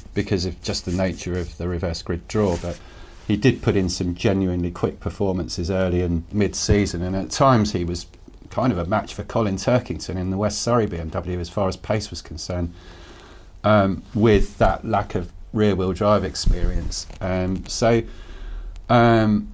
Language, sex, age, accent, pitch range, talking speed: English, male, 40-59, British, 90-115 Hz, 180 wpm